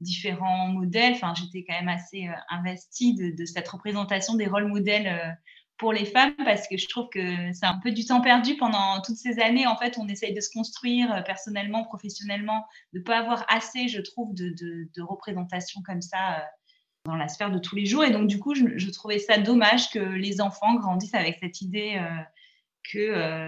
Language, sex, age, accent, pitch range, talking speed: French, female, 20-39, French, 185-230 Hz, 200 wpm